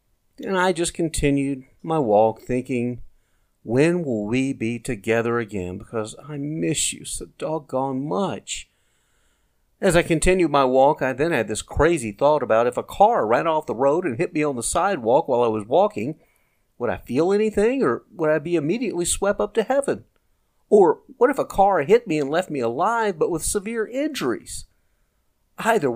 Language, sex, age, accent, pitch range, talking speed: English, male, 50-69, American, 115-190 Hz, 180 wpm